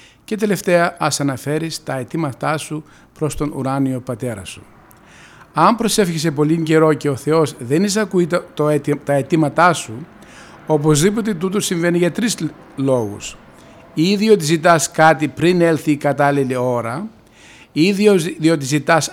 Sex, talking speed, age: male, 135 wpm, 50-69